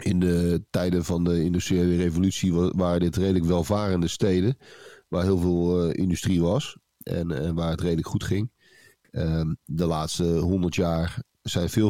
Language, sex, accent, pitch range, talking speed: Dutch, male, Dutch, 85-105 Hz, 160 wpm